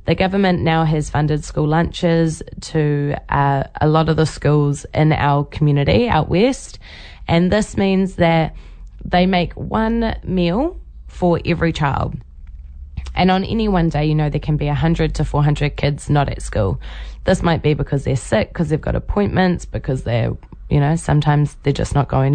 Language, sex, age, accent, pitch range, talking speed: English, female, 20-39, Australian, 145-175 Hz, 175 wpm